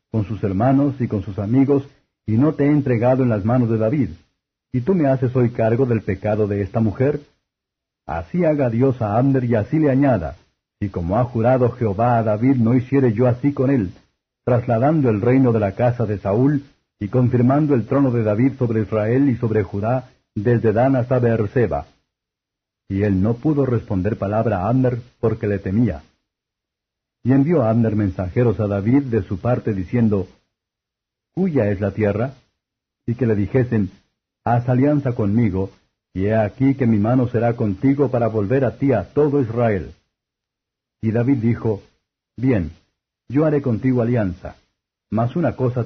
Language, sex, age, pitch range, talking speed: Spanish, male, 60-79, 105-130 Hz, 175 wpm